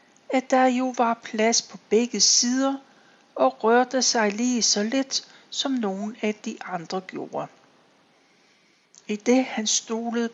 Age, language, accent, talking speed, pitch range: 60-79, Danish, native, 140 wpm, 205-255 Hz